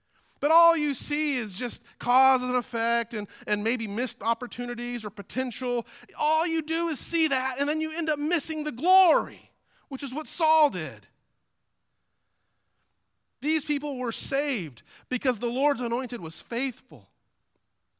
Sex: male